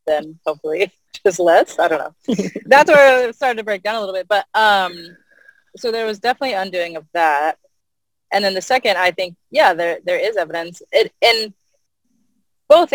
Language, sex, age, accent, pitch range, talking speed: English, female, 20-39, American, 175-215 Hz, 180 wpm